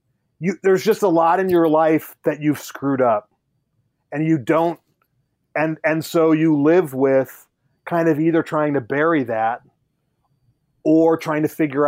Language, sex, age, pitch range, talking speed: English, male, 30-49, 130-165 Hz, 165 wpm